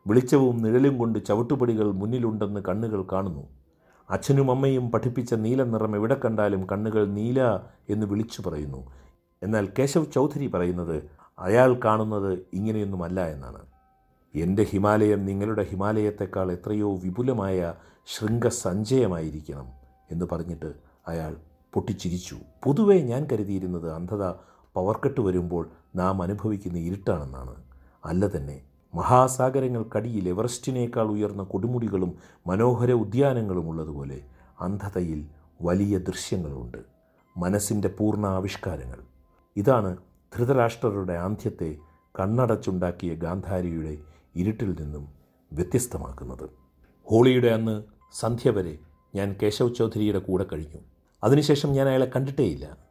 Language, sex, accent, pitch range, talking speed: Malayalam, male, native, 85-115 Hz, 90 wpm